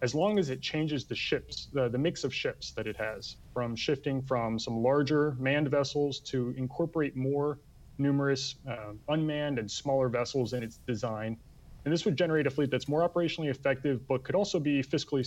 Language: English